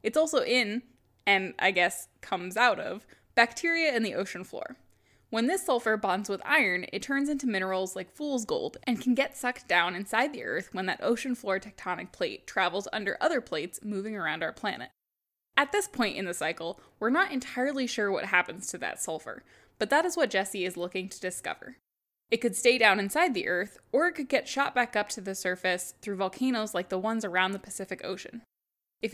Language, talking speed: English, 205 wpm